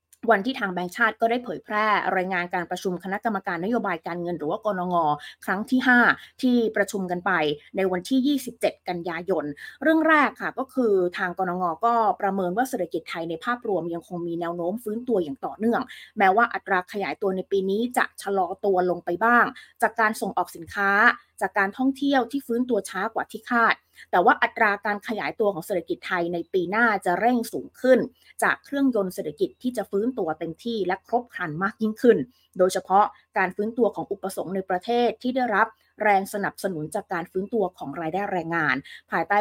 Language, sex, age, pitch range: Thai, female, 20-39, 180-235 Hz